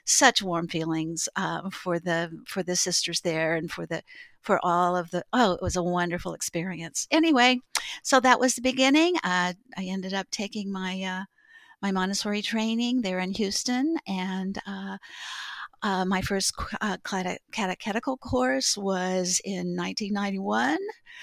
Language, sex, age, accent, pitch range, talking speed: English, female, 50-69, American, 190-245 Hz, 150 wpm